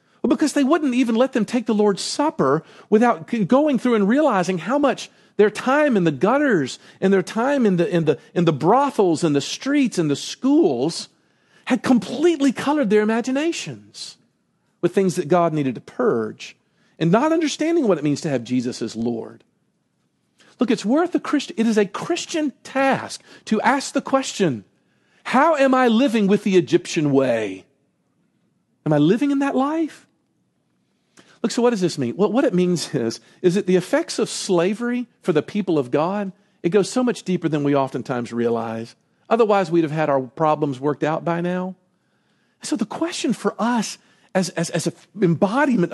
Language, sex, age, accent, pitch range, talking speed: English, male, 40-59, American, 170-260 Hz, 180 wpm